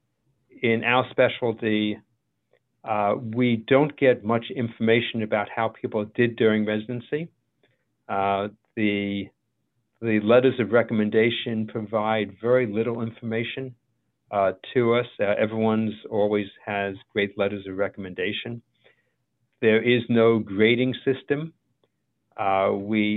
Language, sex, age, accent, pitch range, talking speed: English, male, 50-69, American, 110-125 Hz, 110 wpm